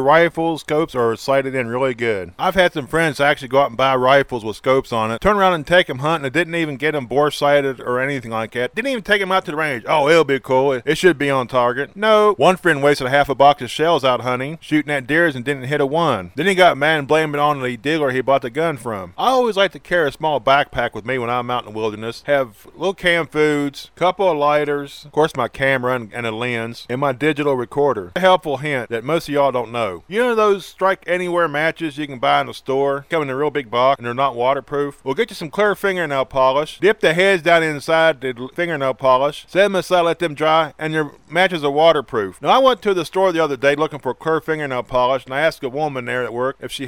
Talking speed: 265 wpm